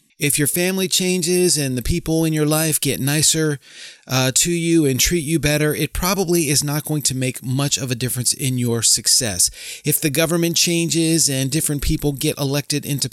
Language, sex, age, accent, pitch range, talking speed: English, male, 30-49, American, 130-160 Hz, 195 wpm